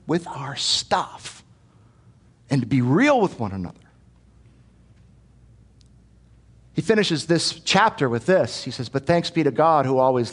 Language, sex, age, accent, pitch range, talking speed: English, male, 50-69, American, 105-140 Hz, 145 wpm